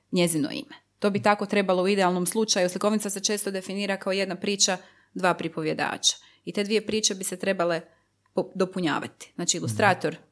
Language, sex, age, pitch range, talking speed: Croatian, female, 30-49, 170-235 Hz, 165 wpm